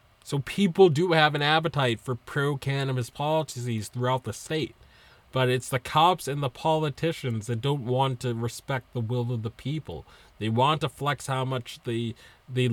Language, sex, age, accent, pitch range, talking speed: English, male, 30-49, American, 115-145 Hz, 180 wpm